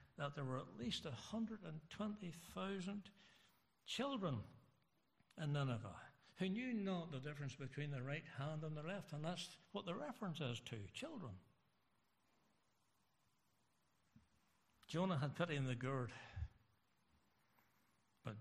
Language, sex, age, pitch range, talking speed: English, male, 60-79, 120-155 Hz, 115 wpm